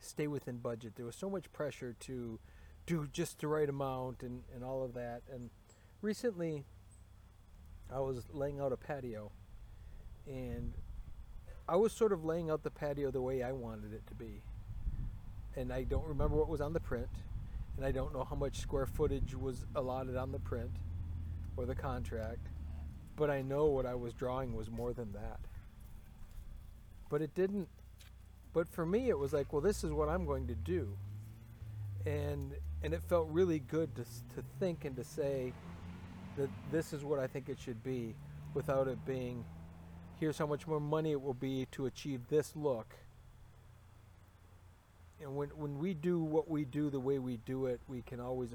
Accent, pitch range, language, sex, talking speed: American, 100-140 Hz, English, male, 185 wpm